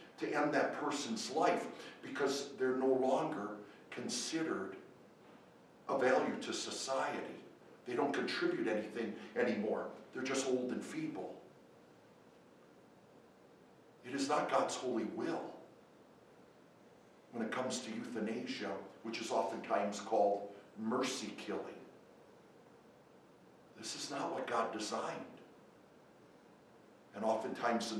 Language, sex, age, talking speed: English, male, 50-69, 105 wpm